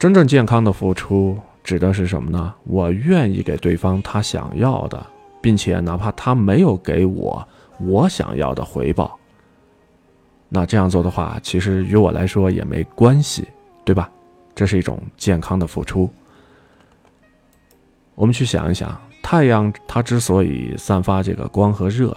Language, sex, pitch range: Chinese, male, 90-110 Hz